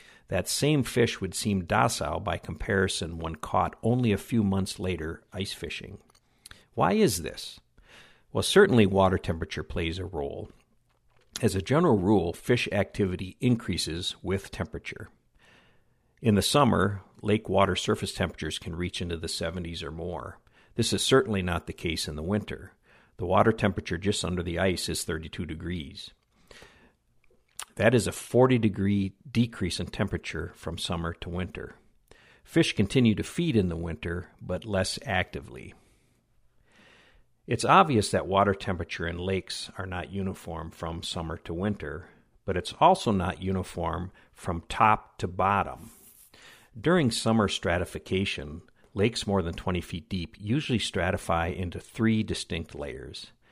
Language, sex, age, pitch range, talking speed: English, male, 60-79, 85-105 Hz, 145 wpm